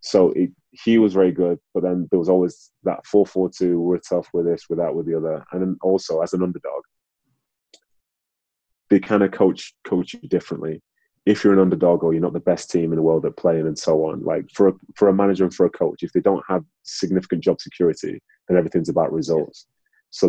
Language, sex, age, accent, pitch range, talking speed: English, male, 30-49, British, 80-95 Hz, 220 wpm